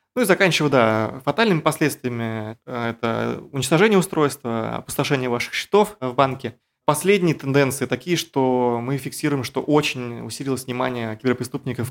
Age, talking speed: 20-39, 125 wpm